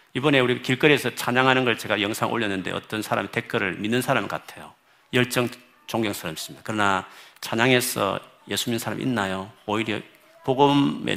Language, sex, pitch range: Korean, male, 105-140 Hz